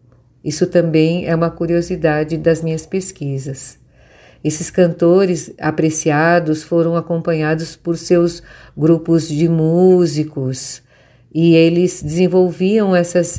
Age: 50-69